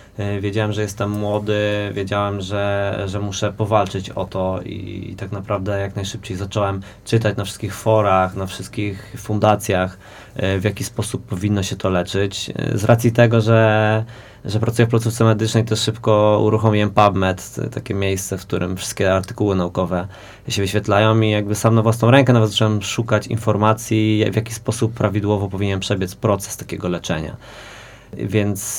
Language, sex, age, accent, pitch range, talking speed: Polish, male, 20-39, native, 100-115 Hz, 155 wpm